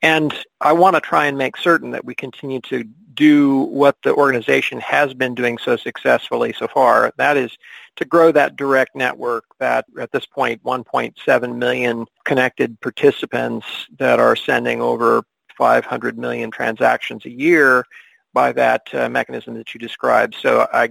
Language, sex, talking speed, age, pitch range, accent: English, male, 160 wpm, 50-69, 125-150 Hz, American